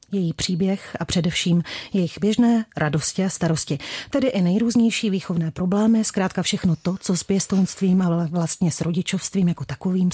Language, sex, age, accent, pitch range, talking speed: Czech, female, 40-59, native, 170-195 Hz, 155 wpm